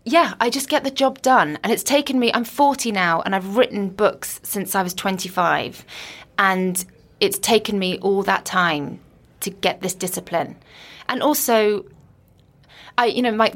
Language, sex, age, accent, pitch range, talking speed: English, female, 20-39, British, 180-220 Hz, 175 wpm